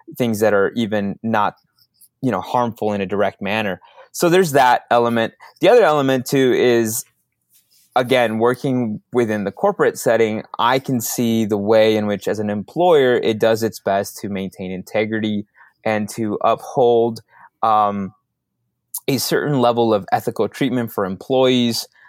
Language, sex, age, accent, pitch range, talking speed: English, male, 20-39, American, 105-120 Hz, 150 wpm